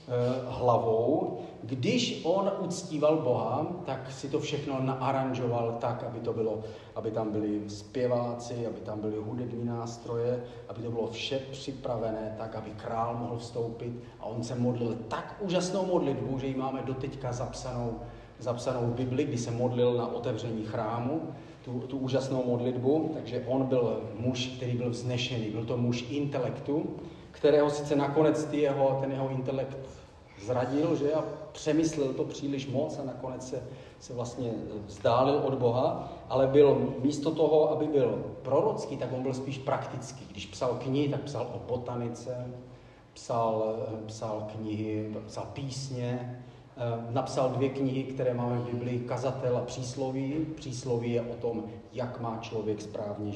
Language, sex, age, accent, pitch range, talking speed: Czech, male, 40-59, native, 115-135 Hz, 150 wpm